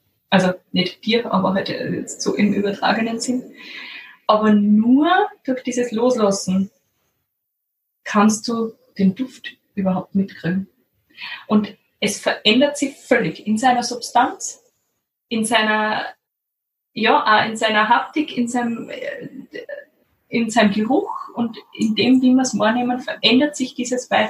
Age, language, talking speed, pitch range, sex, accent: 20-39, German, 125 wpm, 205-255 Hz, female, German